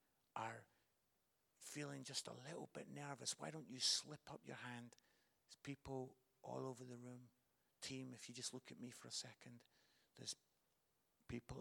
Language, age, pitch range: English, 60-79, 115-145 Hz